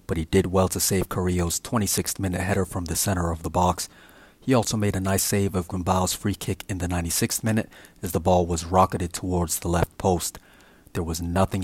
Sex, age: male, 30-49